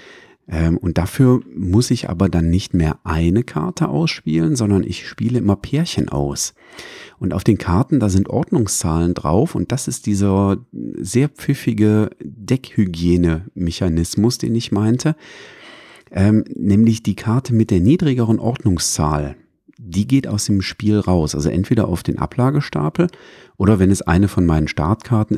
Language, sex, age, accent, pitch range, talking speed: German, male, 40-59, German, 90-115 Hz, 145 wpm